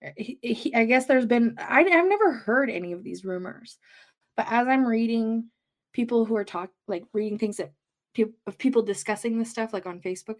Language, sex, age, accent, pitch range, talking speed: English, female, 20-39, American, 220-285 Hz, 200 wpm